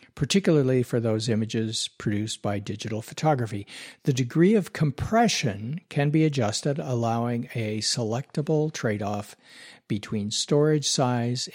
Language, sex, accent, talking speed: English, male, American, 115 wpm